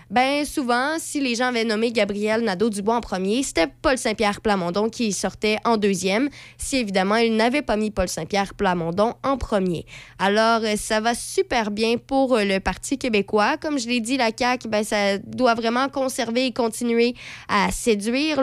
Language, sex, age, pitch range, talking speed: French, female, 20-39, 200-250 Hz, 170 wpm